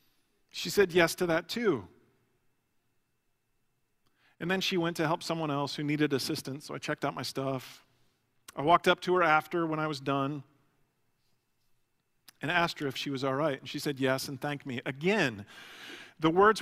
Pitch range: 145-215 Hz